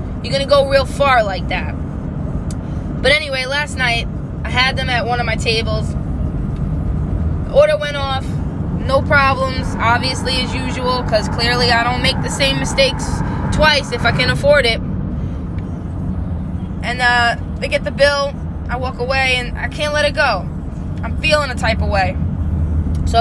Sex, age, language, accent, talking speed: female, 20-39, English, American, 170 wpm